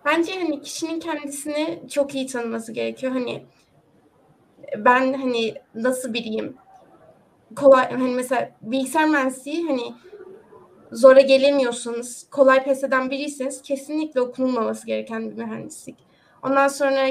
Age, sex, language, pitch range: 20-39, female, Turkish, 240-280 Hz